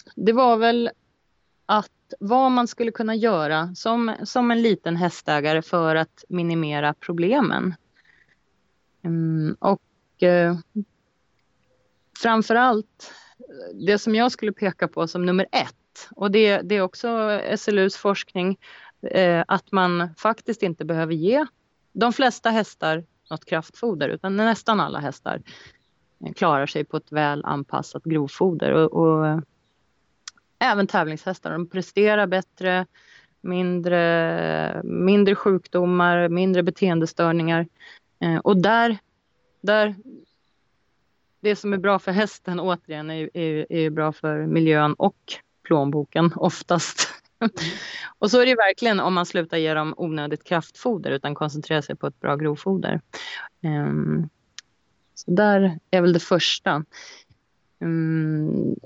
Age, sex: 30-49, female